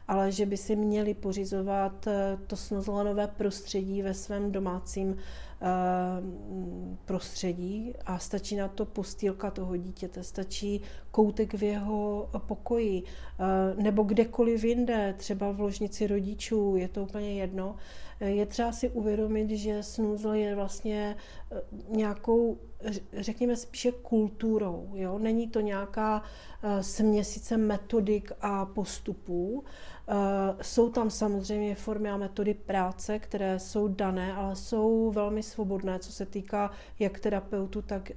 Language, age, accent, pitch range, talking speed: Czech, 40-59, native, 195-215 Hz, 120 wpm